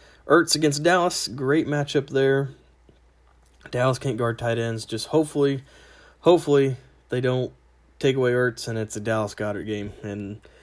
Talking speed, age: 140 wpm, 20-39